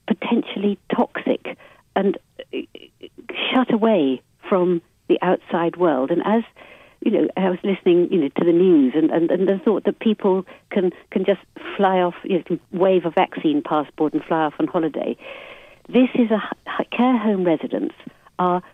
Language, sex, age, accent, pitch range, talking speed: English, female, 60-79, British, 165-245 Hz, 165 wpm